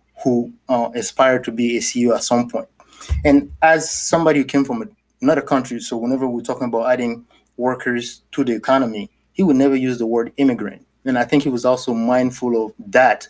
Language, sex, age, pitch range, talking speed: English, male, 30-49, 120-145 Hz, 200 wpm